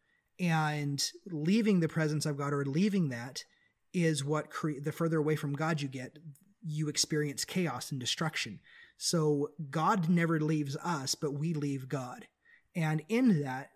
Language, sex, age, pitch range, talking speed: English, male, 30-49, 145-175 Hz, 155 wpm